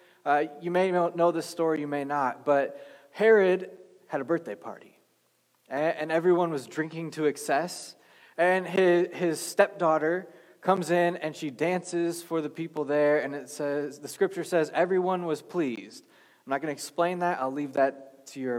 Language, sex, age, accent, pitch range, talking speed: English, male, 20-39, American, 150-190 Hz, 175 wpm